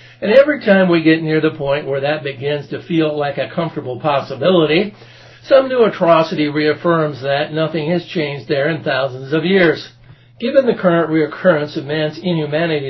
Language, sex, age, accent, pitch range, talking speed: English, male, 60-79, American, 135-165 Hz, 170 wpm